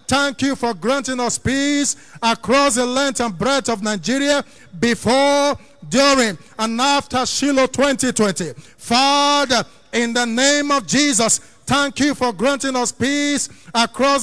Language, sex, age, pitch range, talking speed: English, male, 50-69, 235-280 Hz, 135 wpm